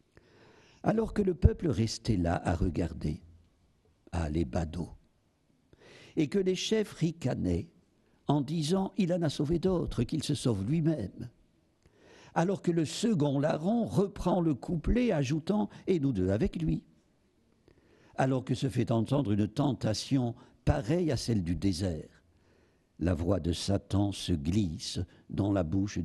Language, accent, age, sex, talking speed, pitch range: French, French, 60-79, male, 145 wpm, 90-150 Hz